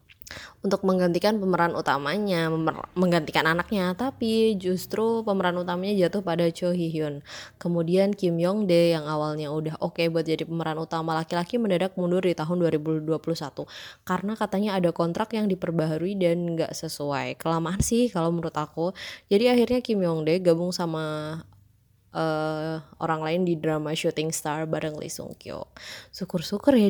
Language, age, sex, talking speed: Indonesian, 20-39, female, 150 wpm